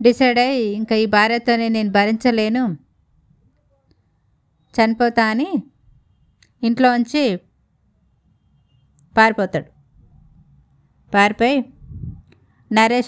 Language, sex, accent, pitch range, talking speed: Telugu, female, native, 190-245 Hz, 55 wpm